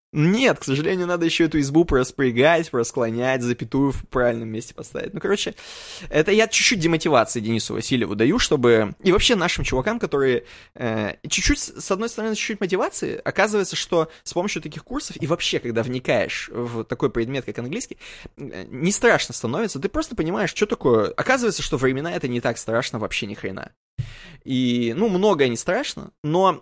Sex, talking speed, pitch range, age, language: male, 170 wpm, 115-175 Hz, 20-39, Russian